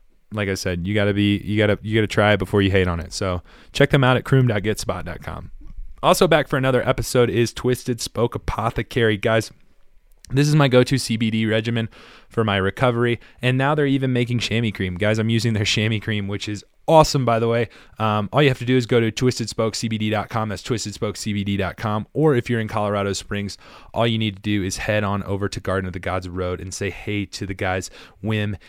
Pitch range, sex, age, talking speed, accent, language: 95-115 Hz, male, 20-39, 220 wpm, American, English